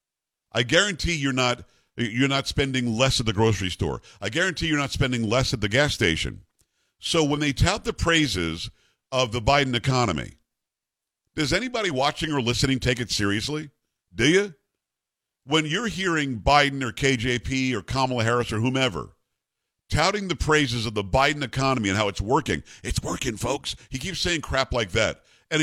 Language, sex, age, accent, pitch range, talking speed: English, male, 50-69, American, 120-155 Hz, 175 wpm